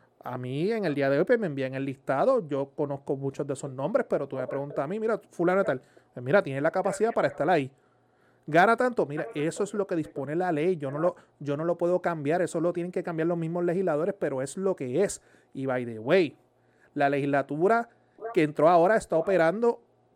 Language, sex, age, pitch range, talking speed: Spanish, male, 30-49, 150-195 Hz, 225 wpm